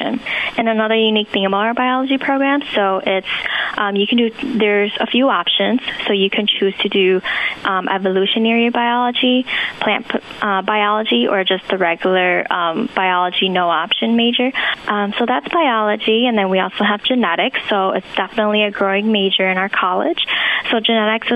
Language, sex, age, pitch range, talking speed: English, female, 10-29, 190-230 Hz, 170 wpm